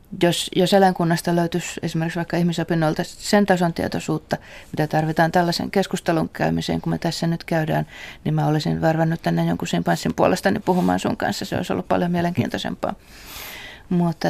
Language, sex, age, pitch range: Finnish, female, 30-49, 150-180 Hz